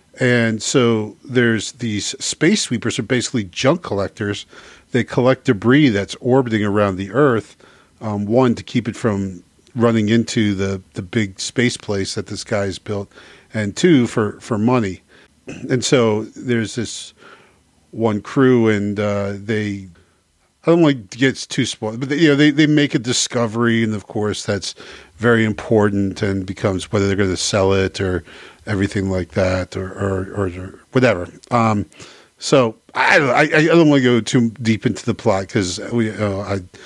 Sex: male